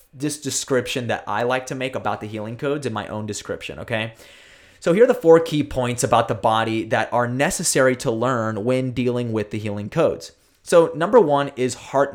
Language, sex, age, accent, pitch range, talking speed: English, male, 20-39, American, 115-145 Hz, 210 wpm